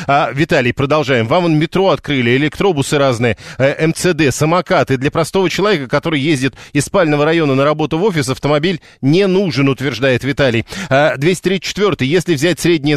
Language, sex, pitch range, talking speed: Russian, male, 135-165 Hz, 155 wpm